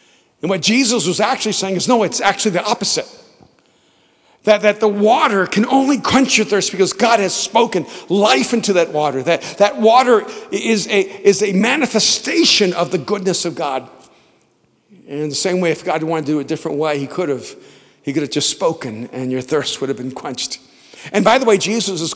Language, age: English, 50-69